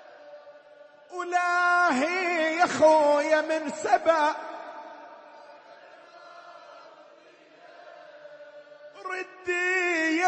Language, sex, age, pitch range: Arabic, male, 40-59, 290-330 Hz